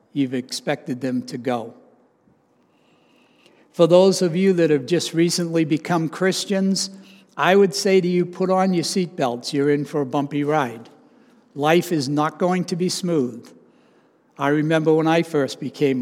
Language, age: English, 60-79